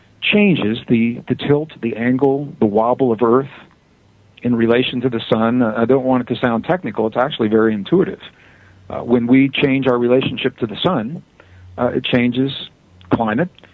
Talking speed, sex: 175 wpm, male